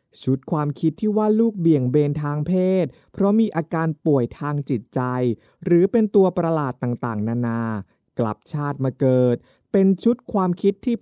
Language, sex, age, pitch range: Thai, male, 20-39, 130-185 Hz